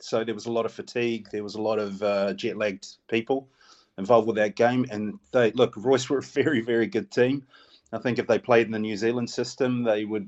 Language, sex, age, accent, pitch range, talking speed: English, male, 30-49, Australian, 105-120 Hz, 240 wpm